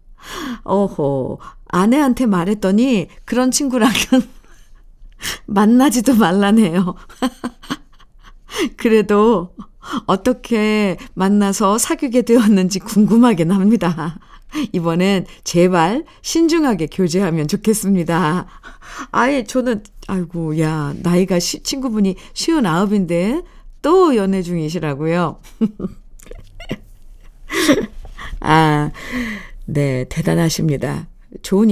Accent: native